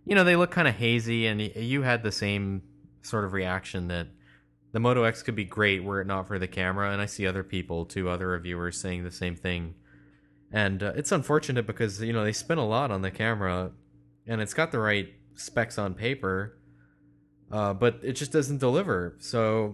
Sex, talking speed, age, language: male, 210 wpm, 20-39, English